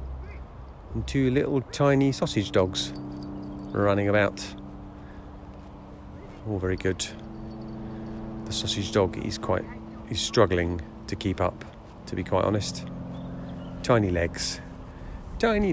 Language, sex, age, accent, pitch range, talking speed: English, male, 40-59, British, 90-115 Hz, 105 wpm